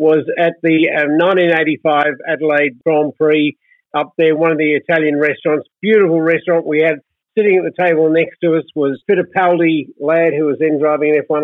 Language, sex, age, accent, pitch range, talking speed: English, male, 50-69, Australian, 155-190 Hz, 180 wpm